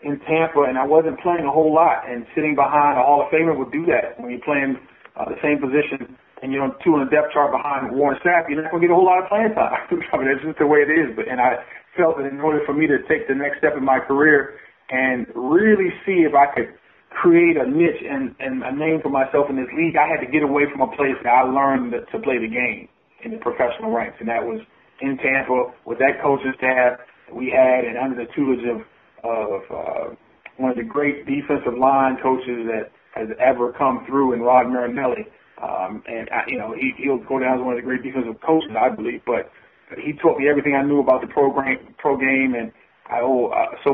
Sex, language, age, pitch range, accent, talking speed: male, English, 40-59, 130-150 Hz, American, 245 wpm